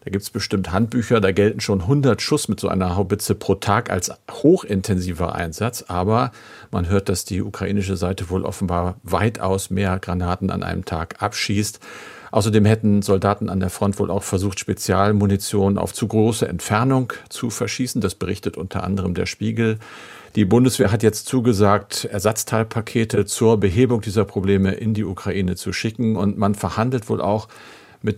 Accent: German